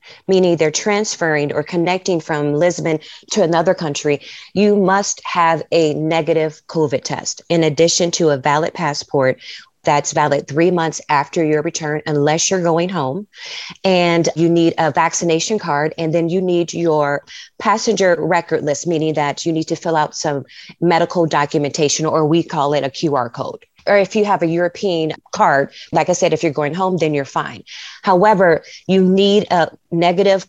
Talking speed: 170 wpm